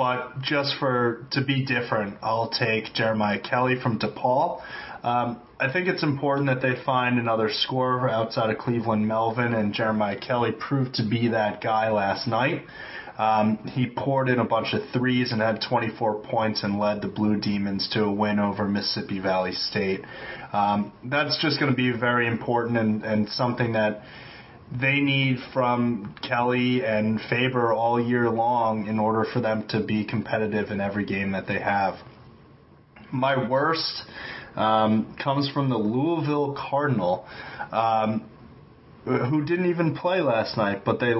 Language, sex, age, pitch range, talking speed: English, male, 30-49, 110-130 Hz, 160 wpm